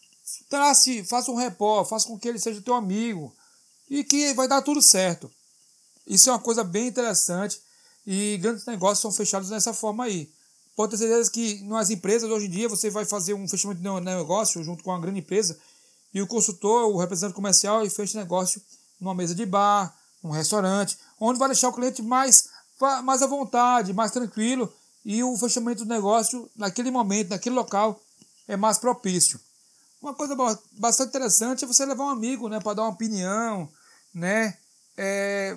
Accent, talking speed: Brazilian, 180 wpm